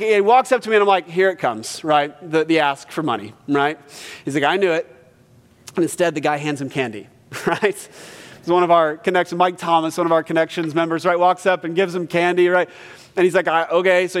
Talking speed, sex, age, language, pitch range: 240 wpm, male, 30-49, English, 140-210 Hz